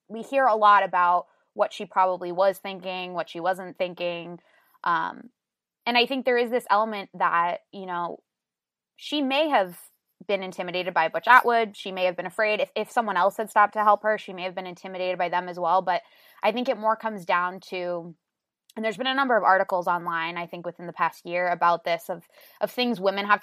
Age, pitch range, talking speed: 20-39, 180-220 Hz, 220 wpm